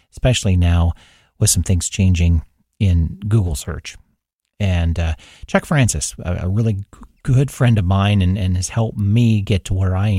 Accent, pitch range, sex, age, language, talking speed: American, 85-115 Hz, male, 40-59, English, 165 wpm